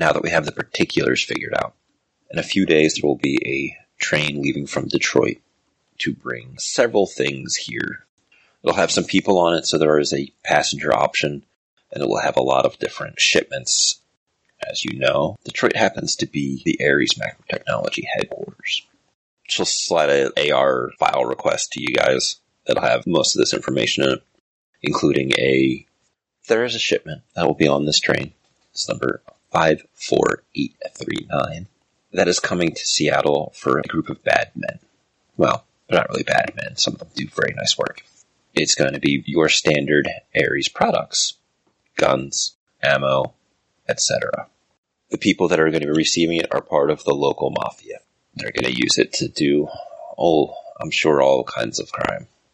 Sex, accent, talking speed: male, American, 180 wpm